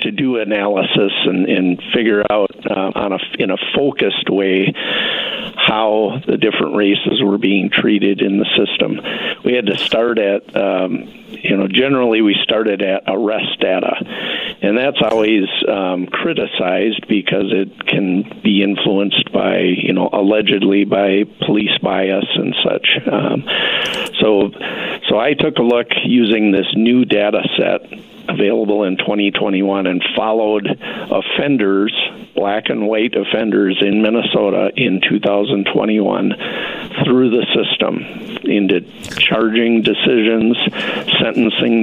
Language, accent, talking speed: English, American, 130 wpm